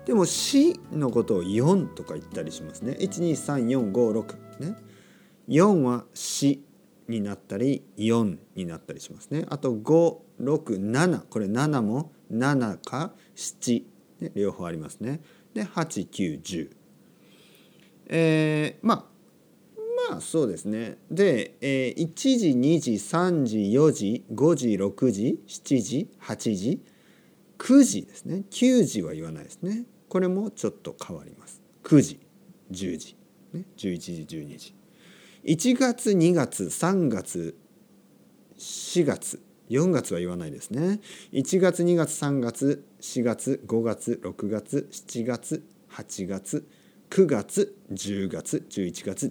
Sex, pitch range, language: male, 105-175 Hz, Japanese